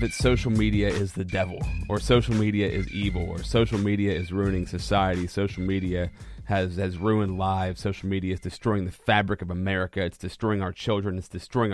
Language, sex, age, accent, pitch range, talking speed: English, male, 30-49, American, 95-115 Hz, 190 wpm